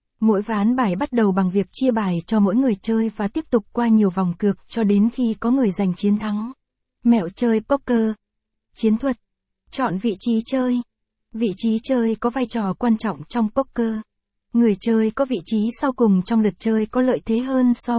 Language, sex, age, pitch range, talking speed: Vietnamese, female, 20-39, 205-240 Hz, 205 wpm